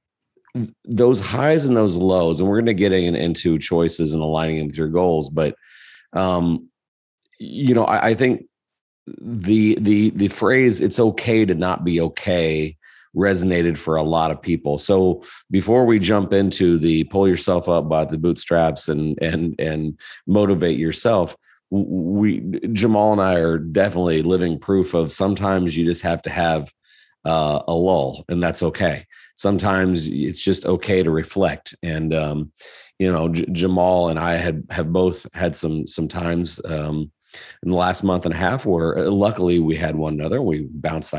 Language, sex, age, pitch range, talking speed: English, male, 40-59, 80-100 Hz, 170 wpm